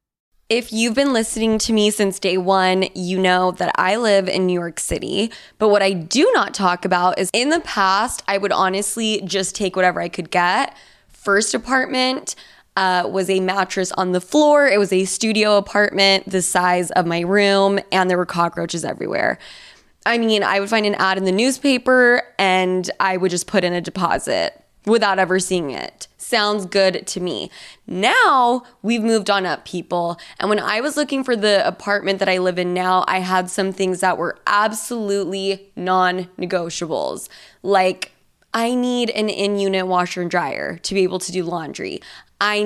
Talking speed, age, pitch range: 185 wpm, 20-39, 185-220 Hz